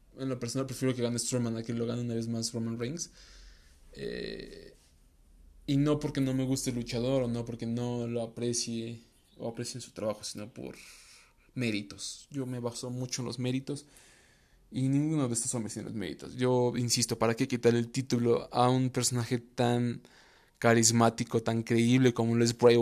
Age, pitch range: 20-39, 120-135 Hz